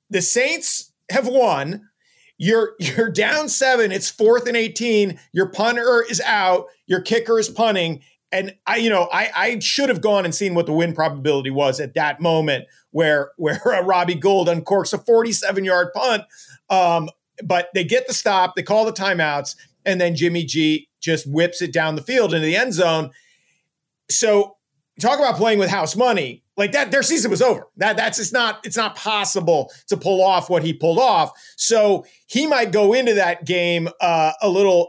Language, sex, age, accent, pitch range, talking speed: English, male, 40-59, American, 175-225 Hz, 185 wpm